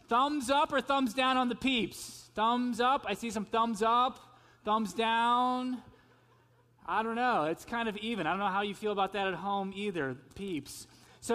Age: 30-49